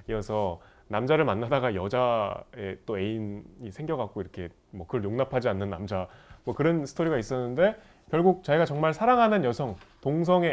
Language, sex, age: Korean, male, 30-49